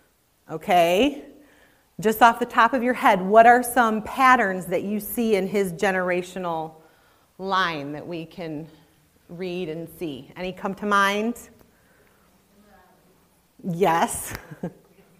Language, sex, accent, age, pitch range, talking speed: English, female, American, 30-49, 175-225 Hz, 120 wpm